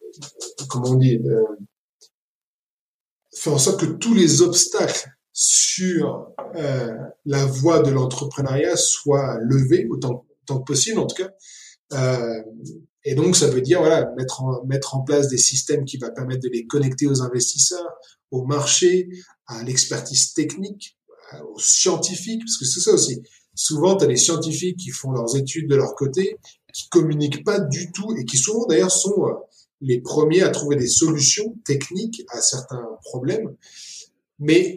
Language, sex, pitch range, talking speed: French, male, 130-175 Hz, 160 wpm